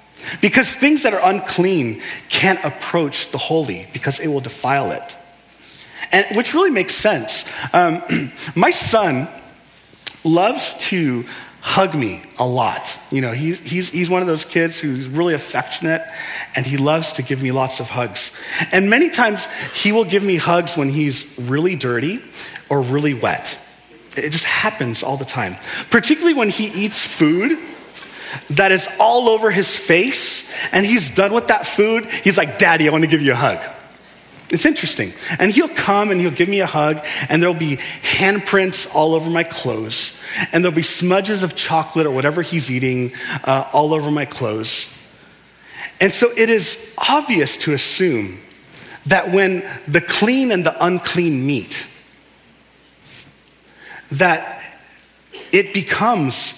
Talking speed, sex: 160 wpm, male